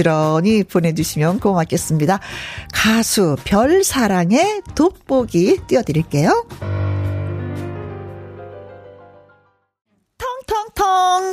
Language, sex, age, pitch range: Korean, female, 40-59, 190-290 Hz